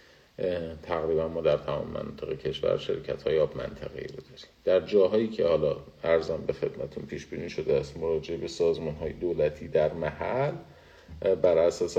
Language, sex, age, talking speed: Persian, male, 50-69, 155 wpm